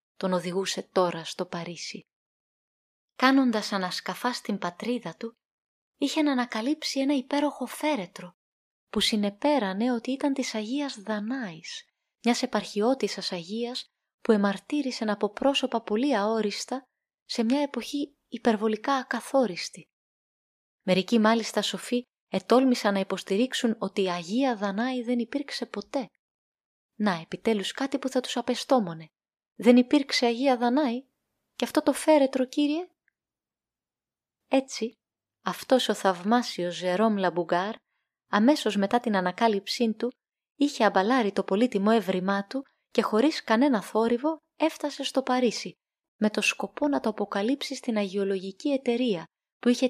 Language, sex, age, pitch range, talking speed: Greek, female, 20-39, 205-265 Hz, 120 wpm